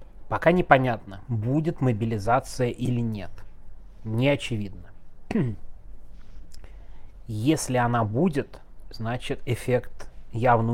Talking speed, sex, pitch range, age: 80 wpm, male, 105-135 Hz, 30-49